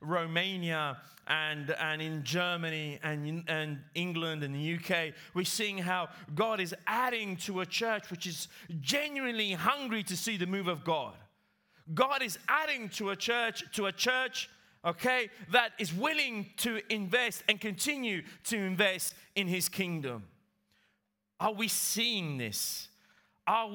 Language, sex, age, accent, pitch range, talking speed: Italian, male, 30-49, British, 160-200 Hz, 145 wpm